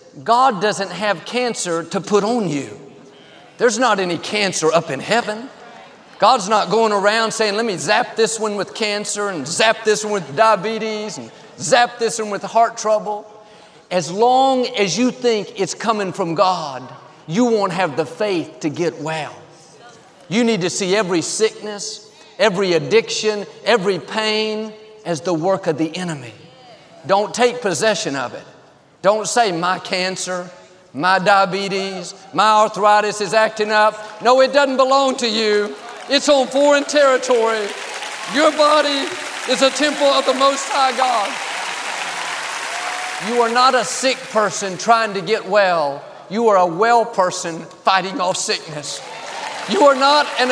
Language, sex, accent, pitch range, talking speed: English, male, American, 190-245 Hz, 155 wpm